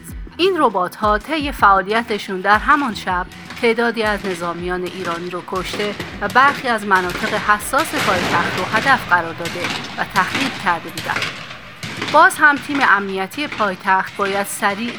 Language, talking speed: Persian, 135 wpm